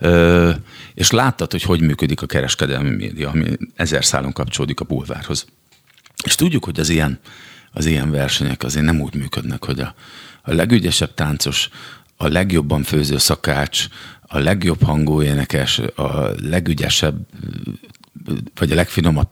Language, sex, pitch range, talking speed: Hungarian, male, 75-90 Hz, 135 wpm